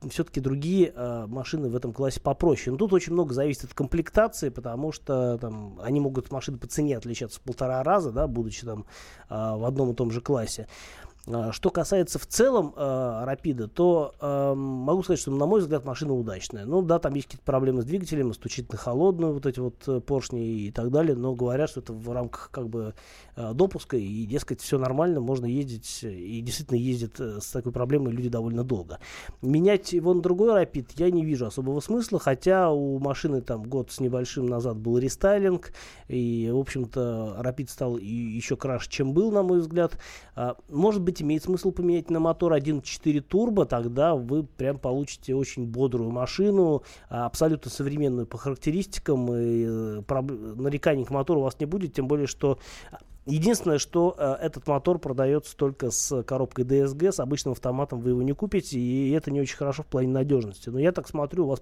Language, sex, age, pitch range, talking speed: Russian, male, 20-39, 120-155 Hz, 180 wpm